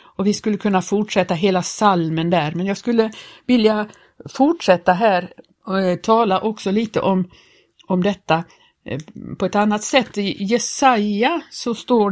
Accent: native